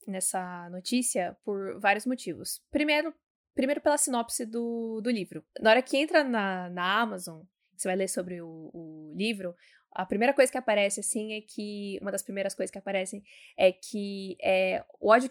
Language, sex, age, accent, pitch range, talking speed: Portuguese, female, 20-39, Brazilian, 195-255 Hz, 175 wpm